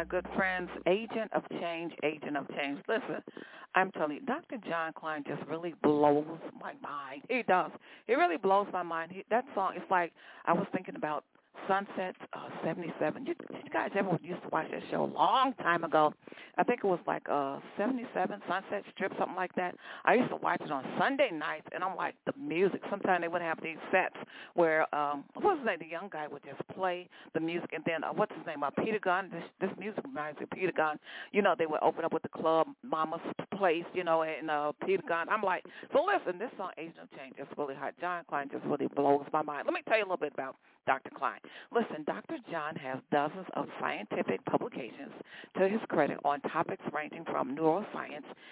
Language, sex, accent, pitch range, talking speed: English, female, American, 155-195 Hz, 215 wpm